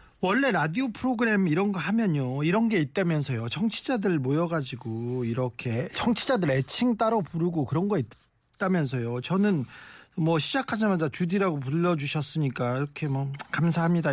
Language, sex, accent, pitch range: Korean, male, native, 135-195 Hz